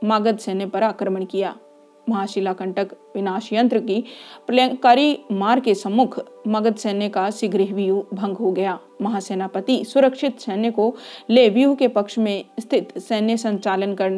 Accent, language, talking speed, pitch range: native, Hindi, 140 wpm, 200-240 Hz